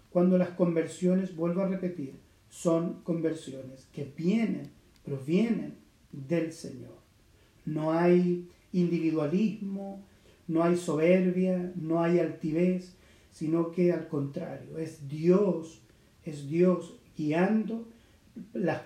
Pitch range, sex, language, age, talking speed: 160-200 Hz, male, Spanish, 40-59, 100 wpm